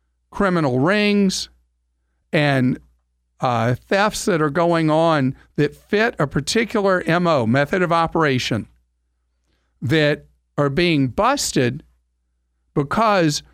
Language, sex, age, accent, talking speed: English, male, 50-69, American, 95 wpm